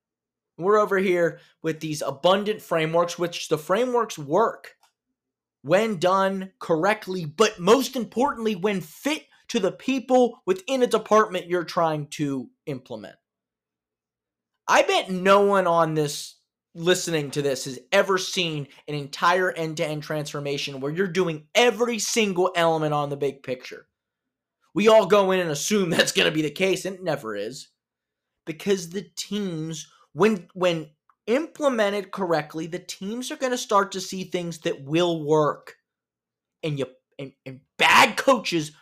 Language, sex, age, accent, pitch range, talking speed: English, male, 20-39, American, 150-200 Hz, 150 wpm